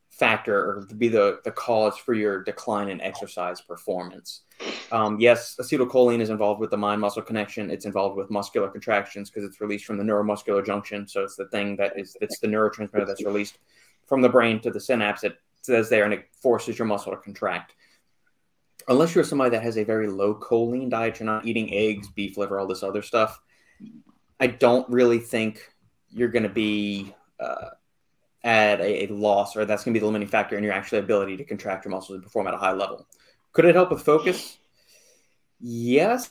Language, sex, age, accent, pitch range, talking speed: English, male, 20-39, American, 105-125 Hz, 200 wpm